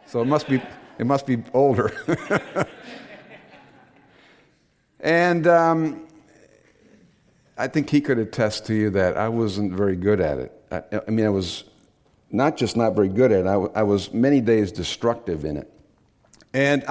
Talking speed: 160 wpm